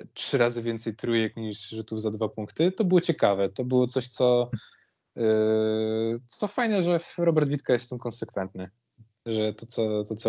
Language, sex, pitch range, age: Polish, male, 105-120 Hz, 20-39